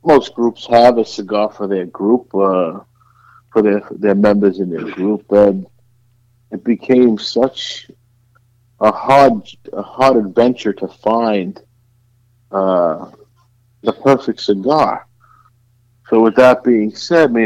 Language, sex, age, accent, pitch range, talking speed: English, male, 50-69, American, 105-120 Hz, 125 wpm